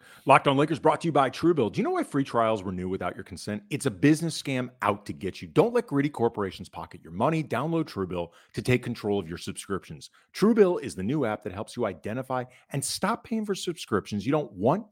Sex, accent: male, American